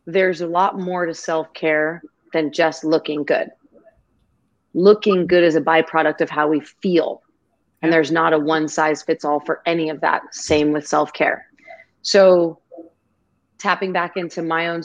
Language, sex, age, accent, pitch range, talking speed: English, female, 30-49, American, 155-180 Hz, 160 wpm